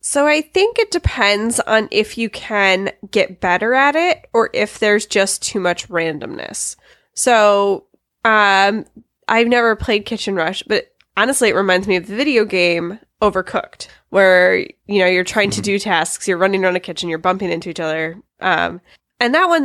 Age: 20-39